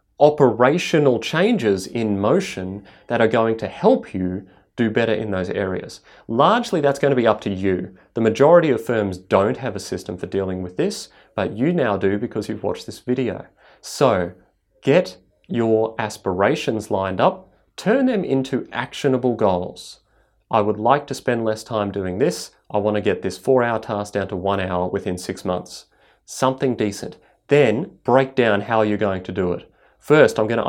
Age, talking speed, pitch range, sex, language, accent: 30-49, 180 wpm, 100-125 Hz, male, English, Australian